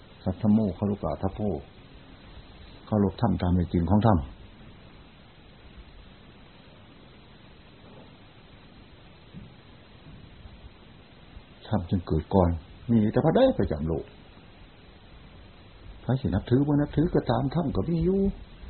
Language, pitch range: Thai, 95-140 Hz